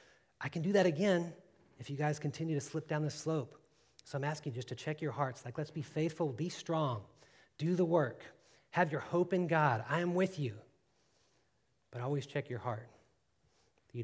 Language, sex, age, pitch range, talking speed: English, male, 40-59, 110-140 Hz, 200 wpm